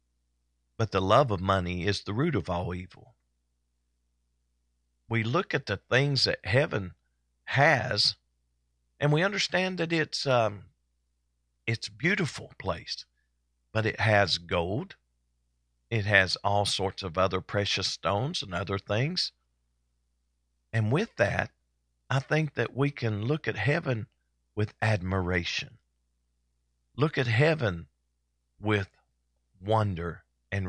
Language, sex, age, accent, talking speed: English, male, 50-69, American, 120 wpm